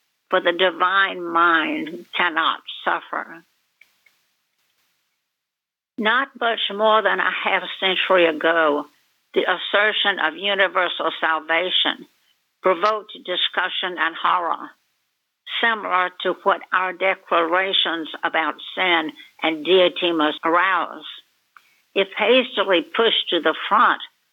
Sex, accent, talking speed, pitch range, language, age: female, American, 100 wpm, 175-205 Hz, English, 60-79